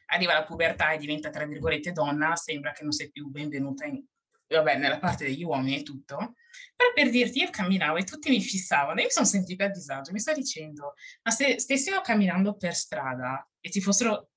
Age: 20-39